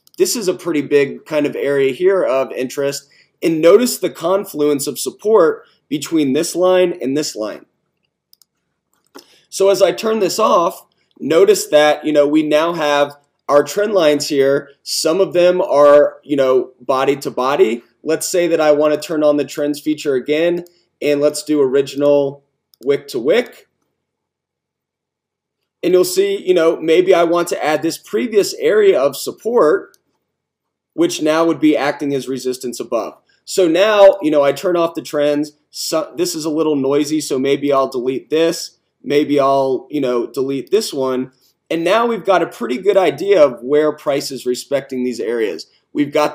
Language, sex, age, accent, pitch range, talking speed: English, male, 30-49, American, 140-190 Hz, 175 wpm